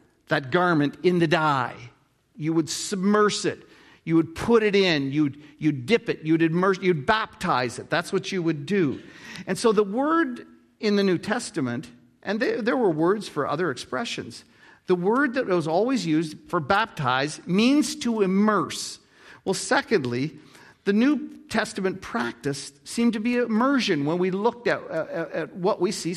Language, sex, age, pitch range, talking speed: English, male, 50-69, 150-205 Hz, 170 wpm